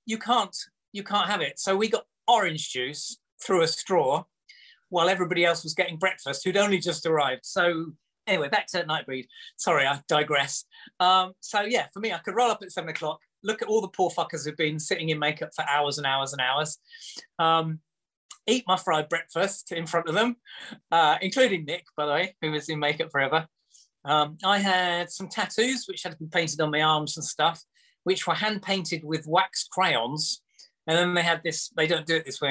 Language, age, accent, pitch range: English, 30-49, British, 155-195 Hz